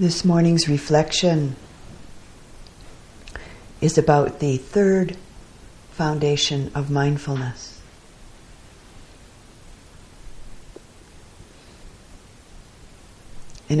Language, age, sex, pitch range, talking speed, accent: English, 50-69, female, 135-155 Hz, 50 wpm, American